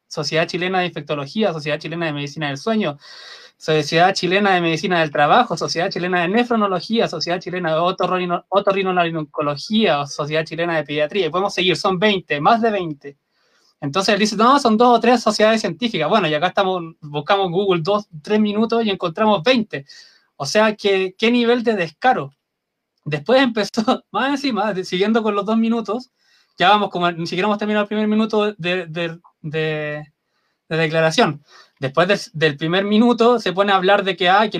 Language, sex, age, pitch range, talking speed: Spanish, male, 20-39, 160-215 Hz, 185 wpm